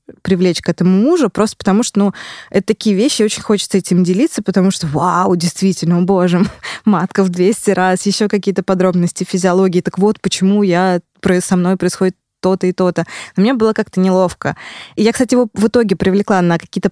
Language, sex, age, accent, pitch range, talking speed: Russian, female, 20-39, native, 180-210 Hz, 190 wpm